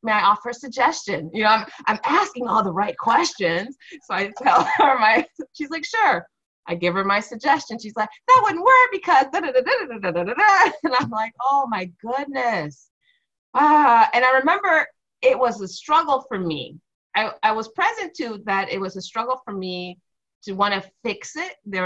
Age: 30-49